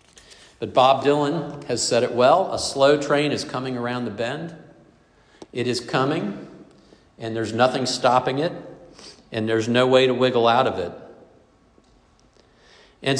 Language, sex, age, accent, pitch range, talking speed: English, male, 50-69, American, 115-145 Hz, 150 wpm